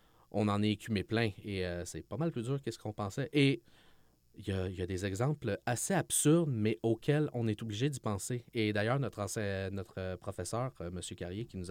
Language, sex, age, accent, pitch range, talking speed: French, male, 30-49, Canadian, 95-110 Hz, 215 wpm